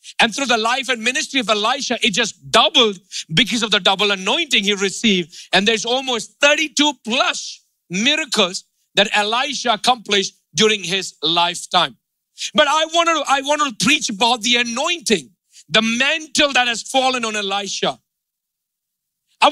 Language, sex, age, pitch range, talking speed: English, male, 50-69, 185-240 Hz, 150 wpm